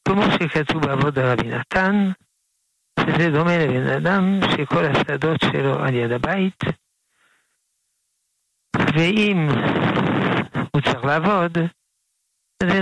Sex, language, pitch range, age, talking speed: male, Hebrew, 140-180 Hz, 60-79, 95 wpm